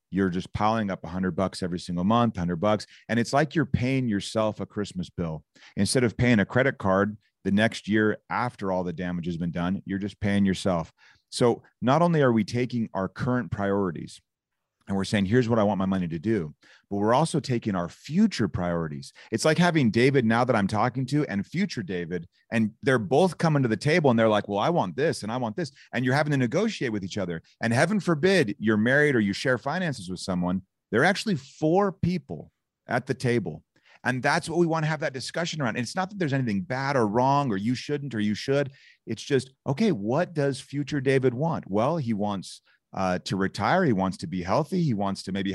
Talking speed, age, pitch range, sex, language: 225 wpm, 30-49, 100-150 Hz, male, English